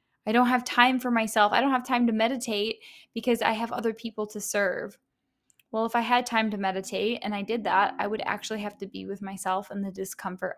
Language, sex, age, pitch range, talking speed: English, female, 10-29, 205-235 Hz, 235 wpm